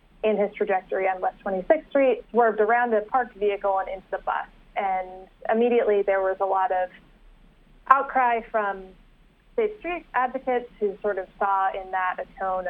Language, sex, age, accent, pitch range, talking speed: English, female, 20-39, American, 190-225 Hz, 170 wpm